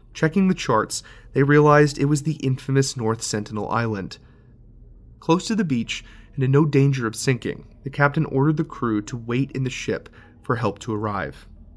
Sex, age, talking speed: male, 30-49, 185 wpm